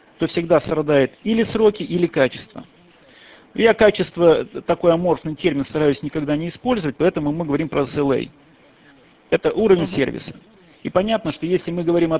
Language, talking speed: Russian, 150 wpm